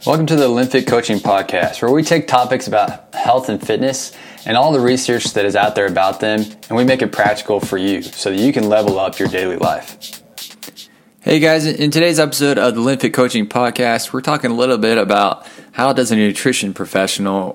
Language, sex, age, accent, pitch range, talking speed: English, male, 20-39, American, 100-125 Hz, 210 wpm